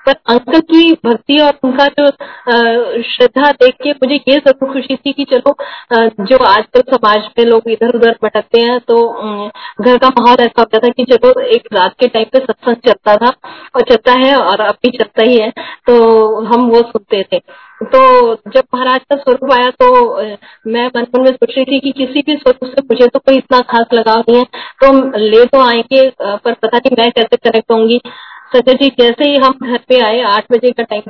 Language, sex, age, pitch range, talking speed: Hindi, female, 20-39, 230-265 Hz, 210 wpm